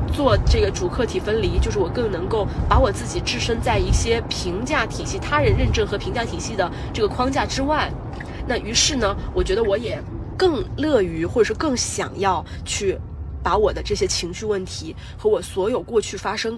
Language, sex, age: Chinese, female, 20-39